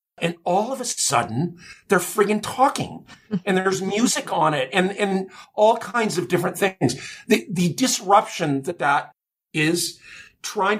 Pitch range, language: 145-185 Hz, English